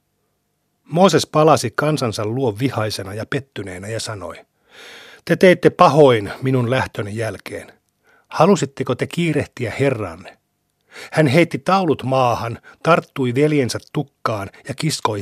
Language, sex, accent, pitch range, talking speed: Finnish, male, native, 110-140 Hz, 110 wpm